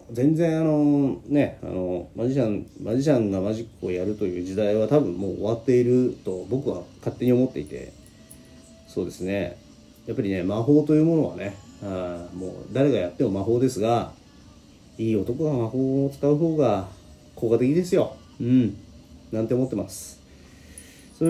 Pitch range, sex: 95-135 Hz, male